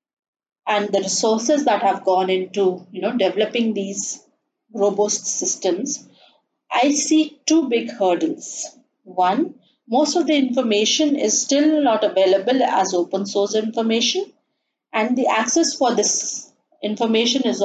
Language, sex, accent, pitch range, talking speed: English, female, Indian, 200-285 Hz, 130 wpm